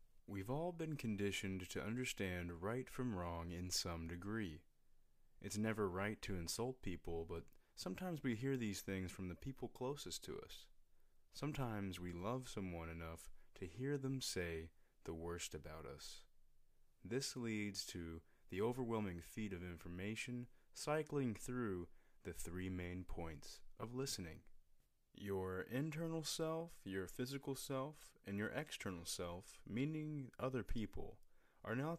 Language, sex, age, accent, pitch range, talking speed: English, male, 30-49, American, 90-130 Hz, 140 wpm